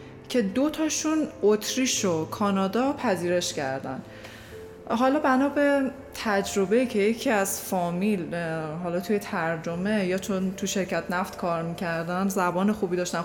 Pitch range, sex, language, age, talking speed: 180-240 Hz, female, Persian, 20-39, 125 wpm